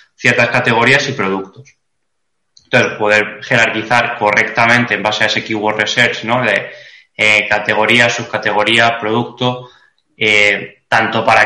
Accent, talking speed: Spanish, 120 wpm